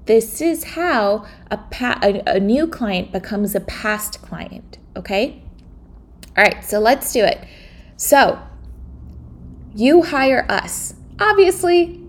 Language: English